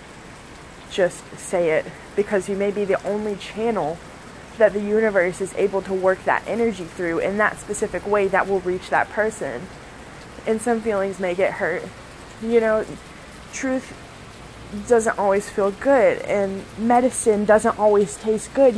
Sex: female